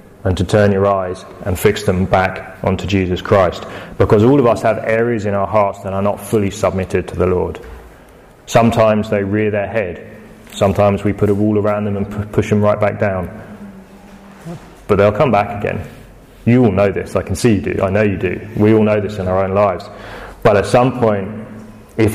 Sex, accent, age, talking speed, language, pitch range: male, British, 30-49, 210 wpm, English, 100-115 Hz